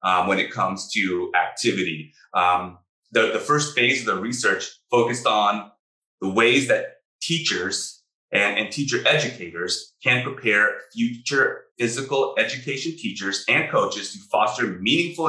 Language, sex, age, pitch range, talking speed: English, male, 30-49, 105-145 Hz, 135 wpm